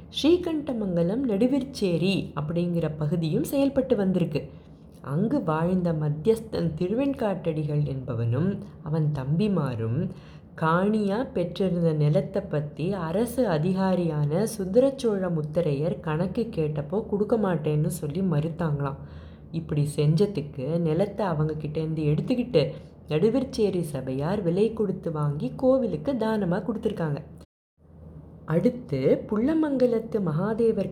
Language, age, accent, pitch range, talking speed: Tamil, 20-39, native, 155-220 Hz, 85 wpm